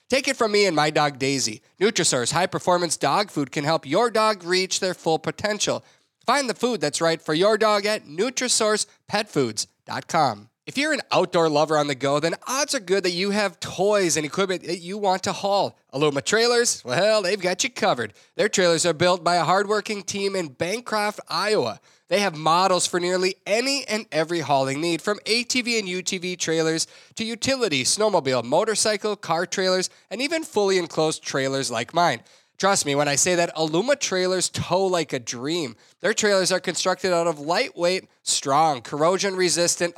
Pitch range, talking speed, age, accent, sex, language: 160-210 Hz, 180 wpm, 30-49, American, male, English